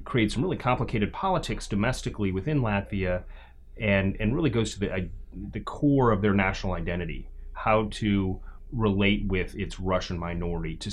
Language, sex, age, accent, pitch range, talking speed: English, male, 30-49, American, 90-110 Hz, 160 wpm